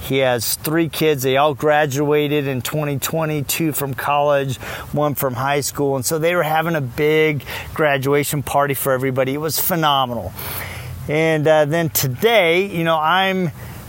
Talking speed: 155 wpm